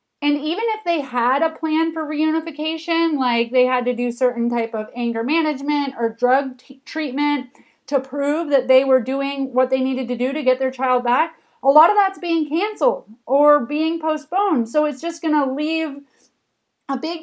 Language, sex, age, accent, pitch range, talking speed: English, female, 30-49, American, 255-310 Hz, 190 wpm